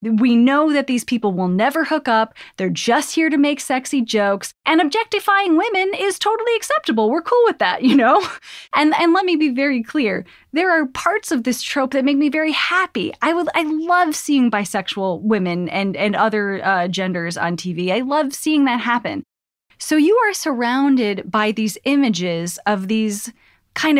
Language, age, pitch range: English, 10-29, 215-295 Hz